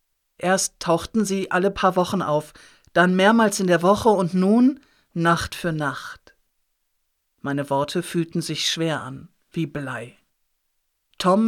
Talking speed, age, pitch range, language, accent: 135 wpm, 50-69, 140-180 Hz, German, German